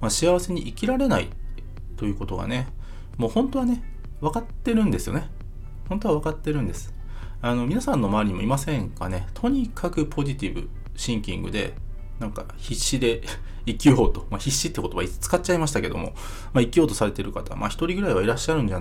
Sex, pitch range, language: male, 95-140 Hz, Japanese